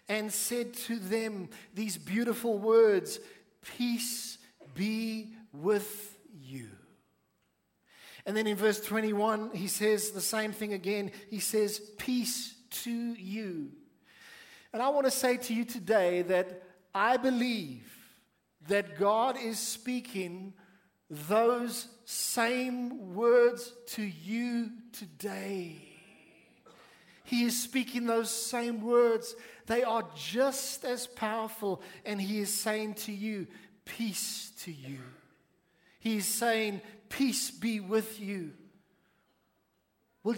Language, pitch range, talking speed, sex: English, 195-235 Hz, 115 wpm, male